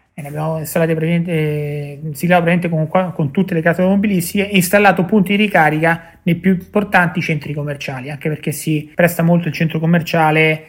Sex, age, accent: male, 30-49, native